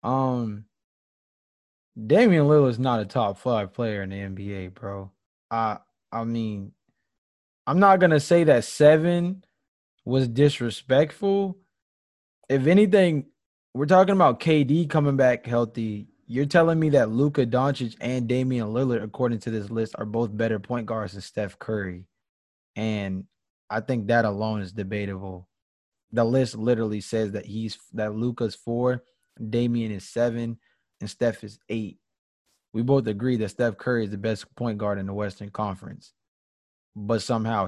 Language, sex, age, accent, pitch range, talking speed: English, male, 20-39, American, 100-130 Hz, 150 wpm